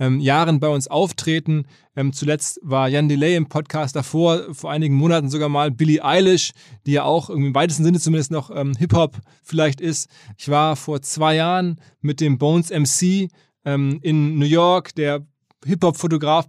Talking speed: 160 wpm